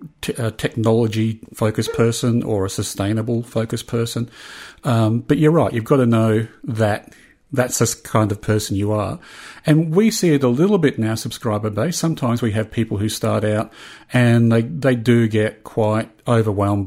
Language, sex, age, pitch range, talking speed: English, male, 40-59, 105-120 Hz, 170 wpm